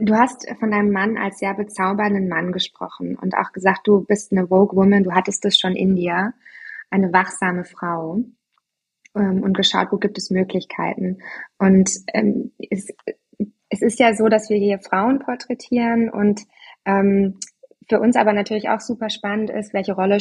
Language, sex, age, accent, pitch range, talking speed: German, female, 20-39, German, 190-215 Hz, 170 wpm